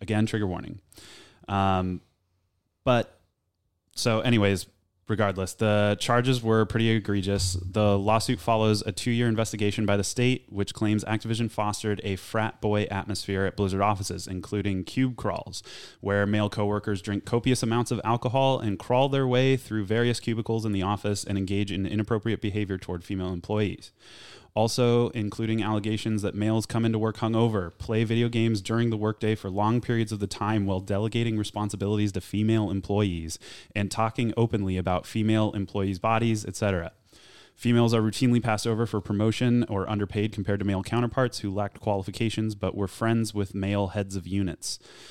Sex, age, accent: male, 20-39, American